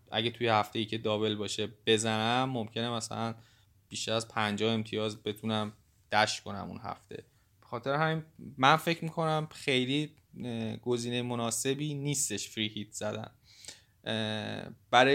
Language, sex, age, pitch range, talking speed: Persian, male, 20-39, 110-140 Hz, 125 wpm